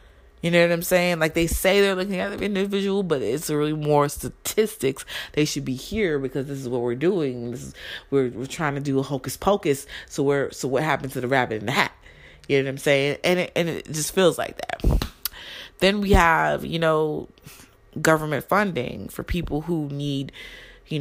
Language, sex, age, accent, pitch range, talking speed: English, female, 30-49, American, 140-190 Hz, 210 wpm